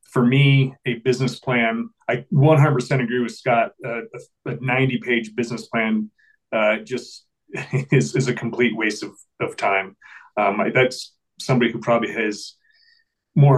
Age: 30-49